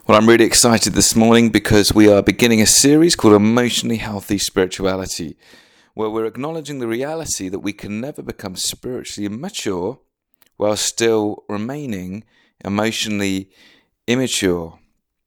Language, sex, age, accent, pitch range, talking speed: English, male, 30-49, British, 100-120 Hz, 130 wpm